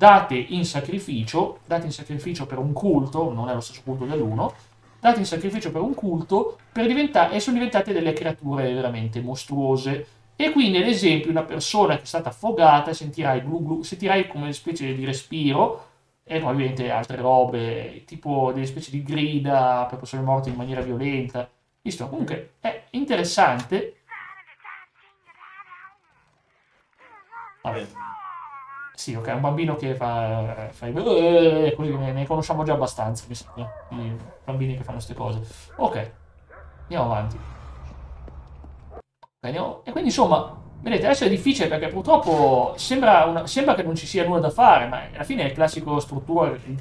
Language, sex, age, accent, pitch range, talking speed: Italian, male, 30-49, native, 125-170 Hz, 150 wpm